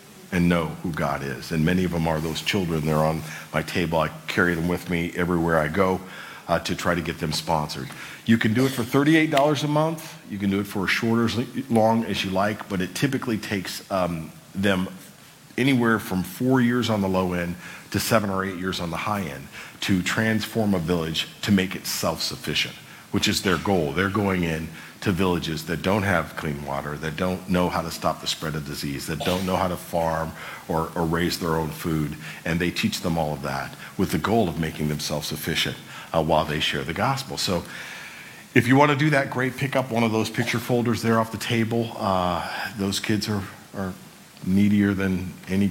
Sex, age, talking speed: male, 50-69, 215 wpm